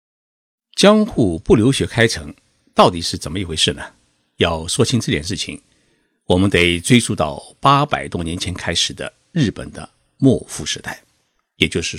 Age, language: 60-79, Chinese